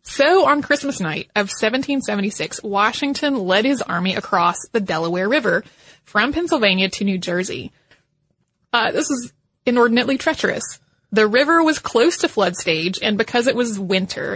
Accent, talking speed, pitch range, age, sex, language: American, 150 wpm, 195-260 Hz, 20-39, female, English